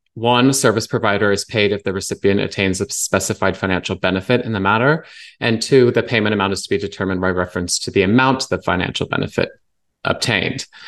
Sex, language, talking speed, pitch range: male, English, 190 wpm, 95-115 Hz